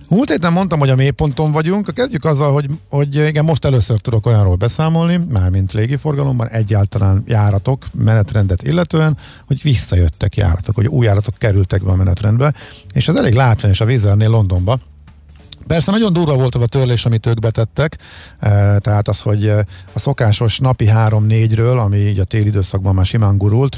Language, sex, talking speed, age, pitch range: Hungarian, male, 165 wpm, 50-69, 105-130 Hz